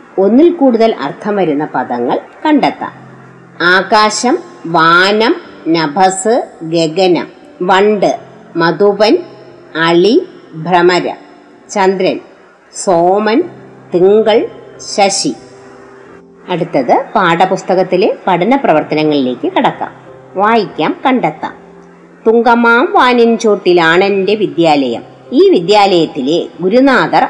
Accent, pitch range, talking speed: native, 175-255 Hz, 70 wpm